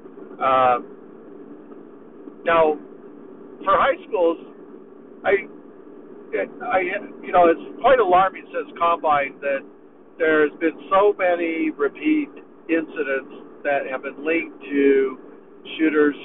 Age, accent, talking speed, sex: 60-79, American, 100 wpm, male